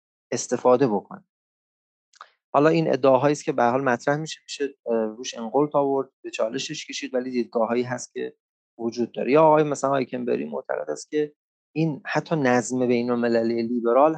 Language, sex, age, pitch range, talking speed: English, male, 30-49, 110-145 Hz, 165 wpm